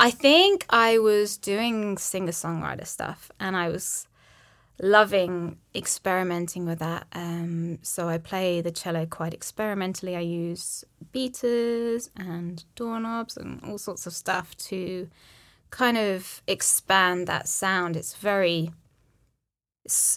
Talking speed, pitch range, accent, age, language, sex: 125 wpm, 170-205 Hz, British, 20-39, English, female